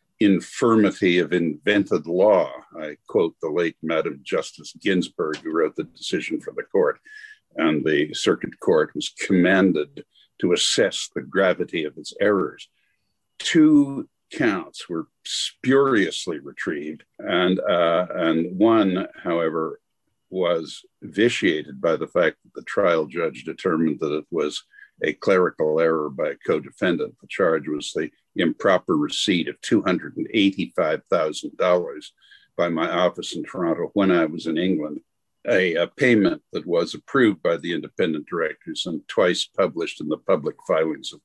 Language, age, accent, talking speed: English, 60-79, American, 140 wpm